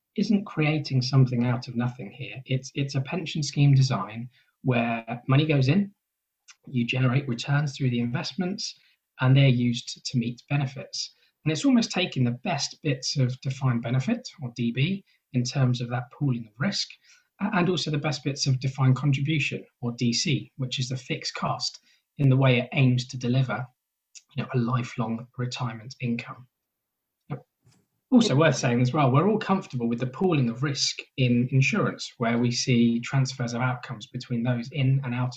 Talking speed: 170 wpm